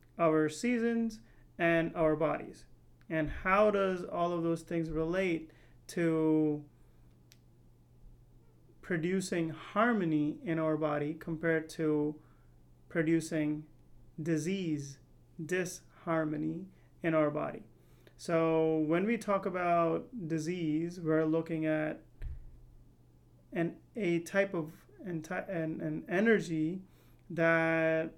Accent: American